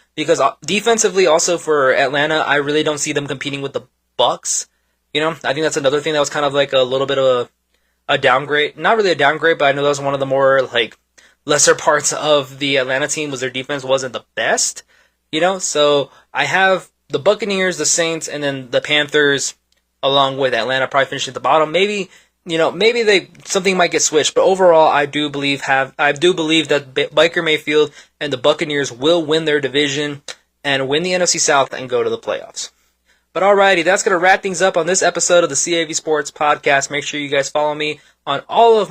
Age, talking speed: 20-39, 220 wpm